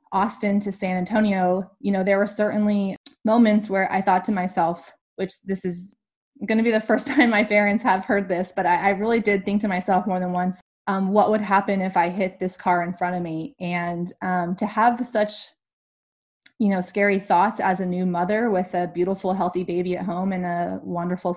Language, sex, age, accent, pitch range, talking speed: English, female, 20-39, American, 180-205 Hz, 215 wpm